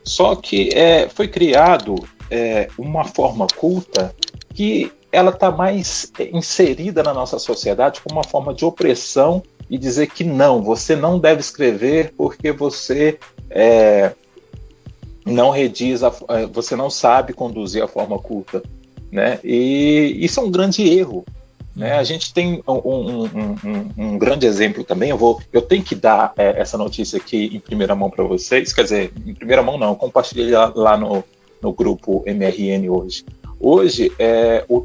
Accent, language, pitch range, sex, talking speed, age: Brazilian, Portuguese, 115-170 Hz, male, 160 wpm, 40-59